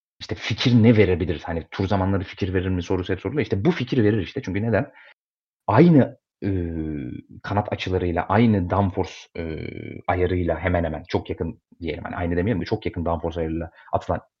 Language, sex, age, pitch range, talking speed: Turkish, male, 30-49, 85-115 Hz, 170 wpm